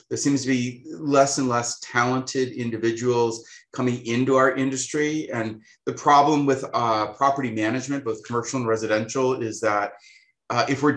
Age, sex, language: 30-49, male, English